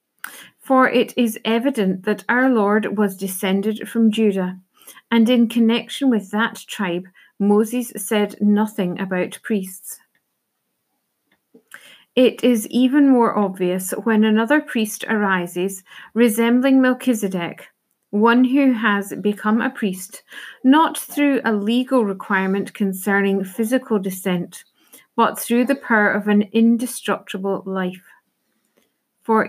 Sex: female